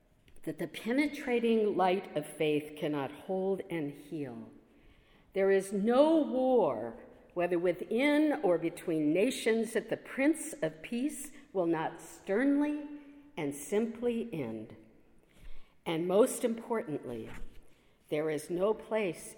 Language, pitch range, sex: English, 145-225 Hz, female